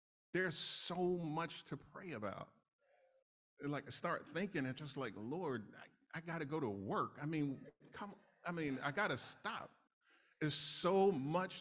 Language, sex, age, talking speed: English, male, 50-69, 165 wpm